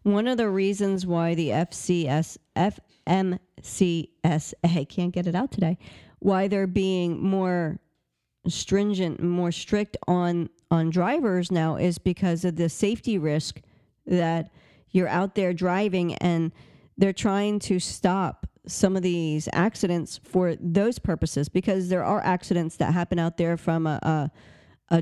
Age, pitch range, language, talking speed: 40-59, 165-200 Hz, English, 140 wpm